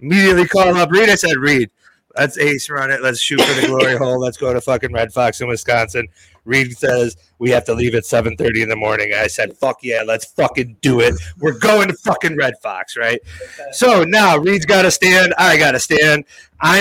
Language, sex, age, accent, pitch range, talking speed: English, male, 30-49, American, 125-175 Hz, 220 wpm